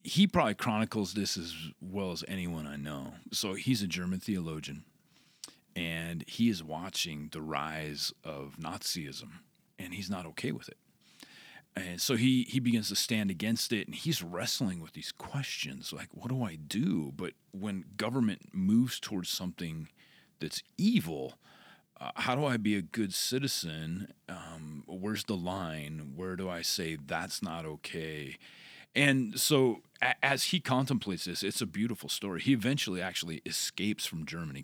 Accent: American